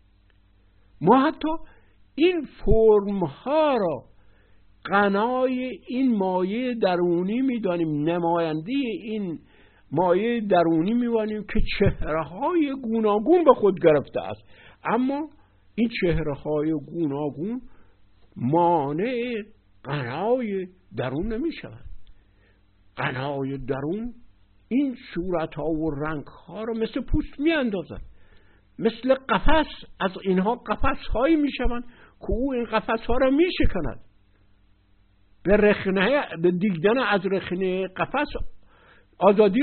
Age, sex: 60-79, male